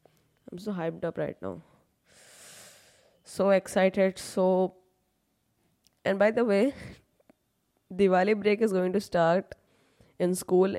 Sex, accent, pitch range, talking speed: female, Indian, 175-205 Hz, 115 wpm